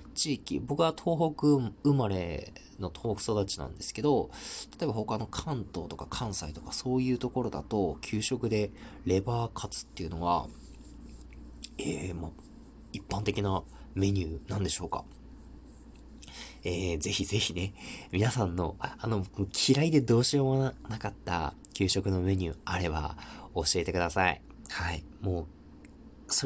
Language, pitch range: Japanese, 90-120 Hz